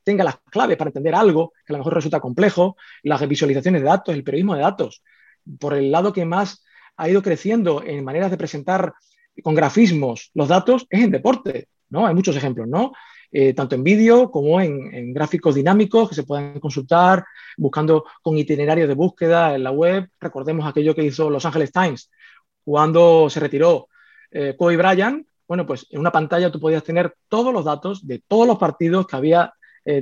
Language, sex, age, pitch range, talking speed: Spanish, male, 30-49, 150-200 Hz, 190 wpm